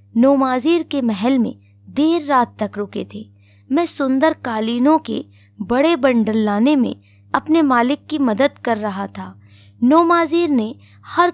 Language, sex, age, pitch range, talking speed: Hindi, female, 20-39, 190-285 Hz, 145 wpm